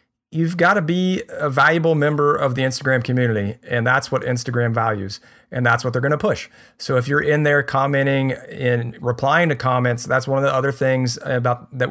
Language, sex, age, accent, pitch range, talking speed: English, male, 40-59, American, 125-150 Hz, 205 wpm